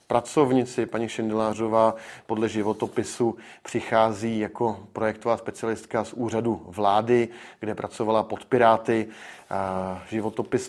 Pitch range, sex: 110-125 Hz, male